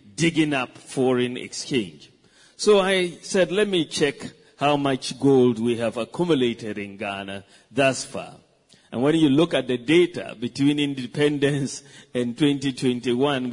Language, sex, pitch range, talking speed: English, male, 125-150 Hz, 140 wpm